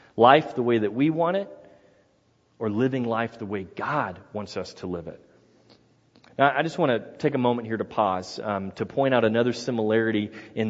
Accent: American